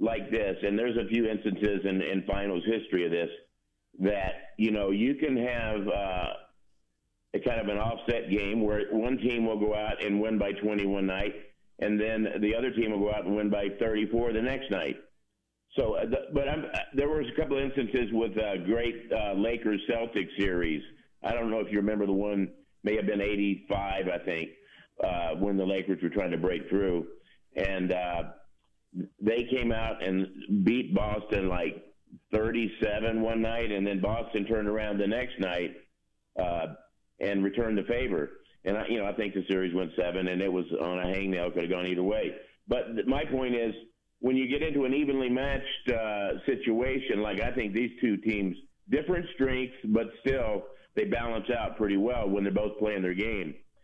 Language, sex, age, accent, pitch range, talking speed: English, male, 50-69, American, 100-115 Hz, 195 wpm